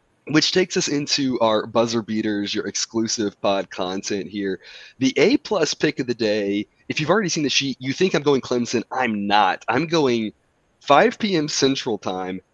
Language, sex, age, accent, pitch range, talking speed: English, male, 30-49, American, 100-140 Hz, 175 wpm